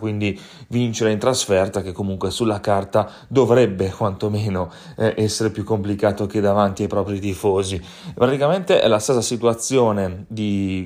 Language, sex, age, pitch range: Italian, male, 30-49, 100-115 Hz